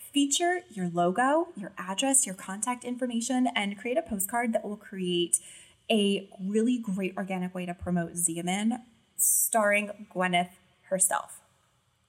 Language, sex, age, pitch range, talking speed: English, female, 20-39, 185-240 Hz, 130 wpm